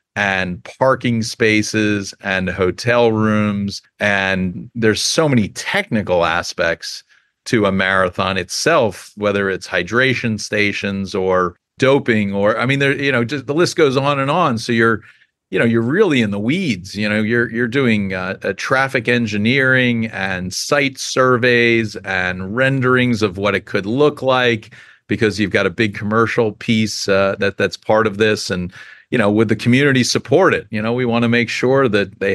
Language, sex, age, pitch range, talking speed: English, male, 40-59, 100-120 Hz, 175 wpm